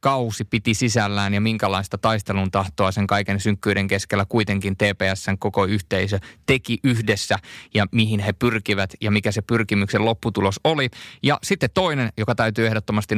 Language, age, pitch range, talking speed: Finnish, 20-39, 100-115 Hz, 145 wpm